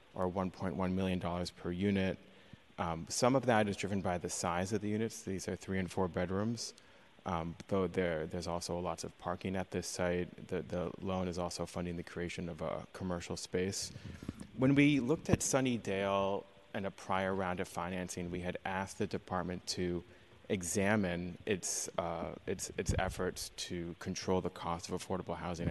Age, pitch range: 30-49, 90-100 Hz